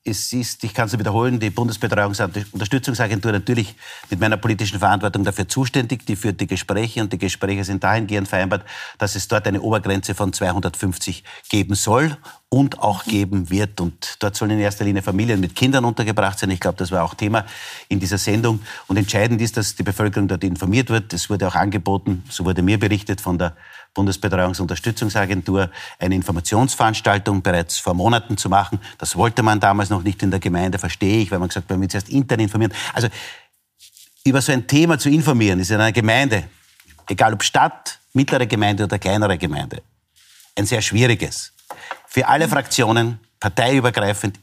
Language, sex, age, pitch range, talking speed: German, male, 50-69, 95-115 Hz, 180 wpm